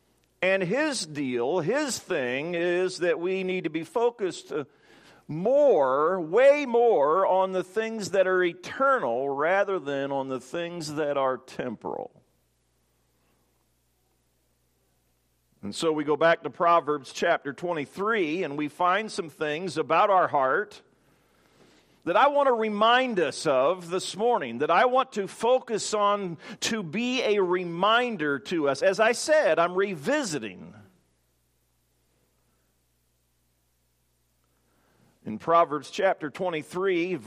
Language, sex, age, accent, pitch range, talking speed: English, male, 50-69, American, 135-205 Hz, 120 wpm